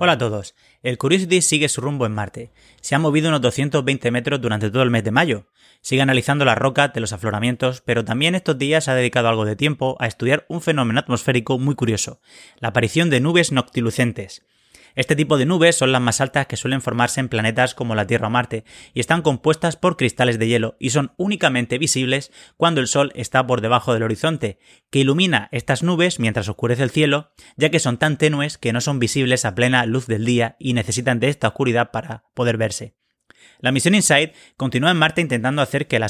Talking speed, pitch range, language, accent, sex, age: 210 wpm, 120-150 Hz, Spanish, Spanish, male, 30-49